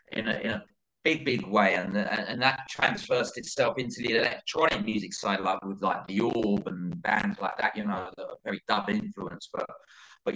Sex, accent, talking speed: male, British, 210 wpm